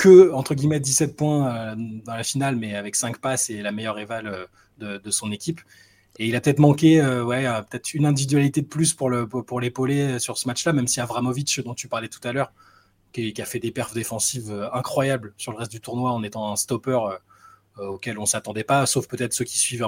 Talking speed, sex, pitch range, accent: 225 wpm, male, 110-140 Hz, French